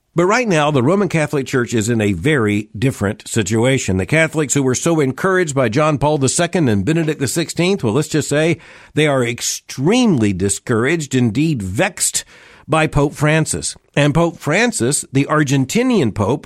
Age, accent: 50-69, American